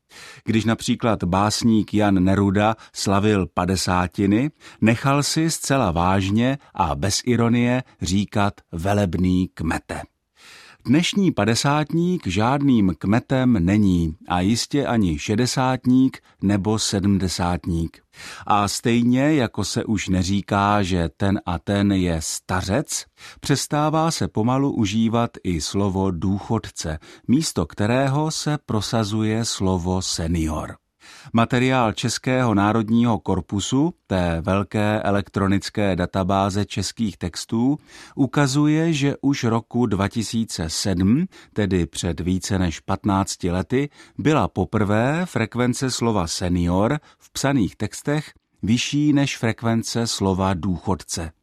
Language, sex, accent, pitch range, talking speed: Czech, male, native, 95-125 Hz, 100 wpm